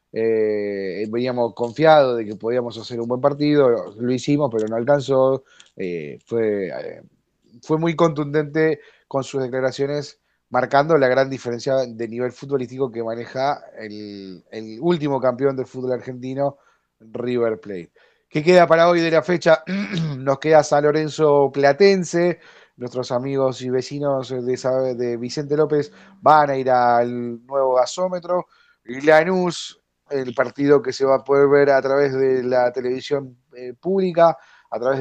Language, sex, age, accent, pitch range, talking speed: Spanish, male, 30-49, Argentinian, 125-150 Hz, 145 wpm